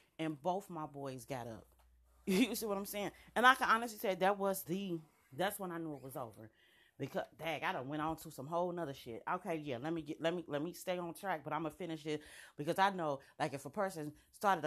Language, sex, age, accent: English, female, 30-49, American